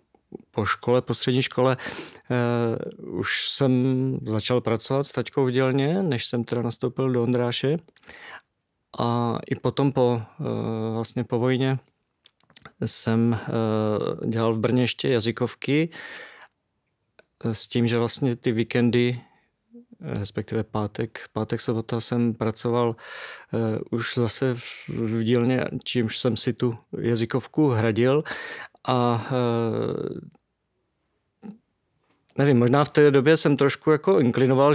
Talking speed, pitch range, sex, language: 110 wpm, 115-135 Hz, male, Czech